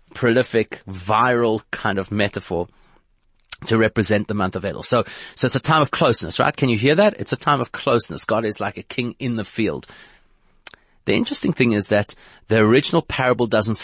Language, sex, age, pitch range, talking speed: English, male, 30-49, 105-130 Hz, 195 wpm